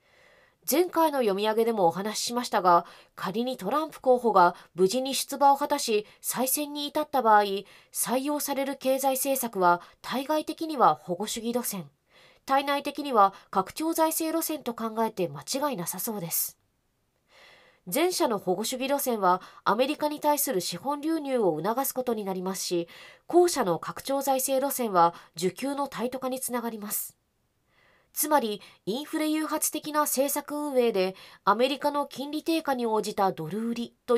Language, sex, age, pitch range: Japanese, female, 20-39, 200-285 Hz